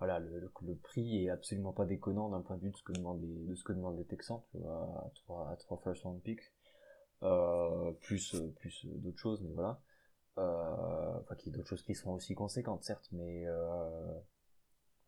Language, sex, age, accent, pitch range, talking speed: French, male, 20-39, French, 90-105 Hz, 220 wpm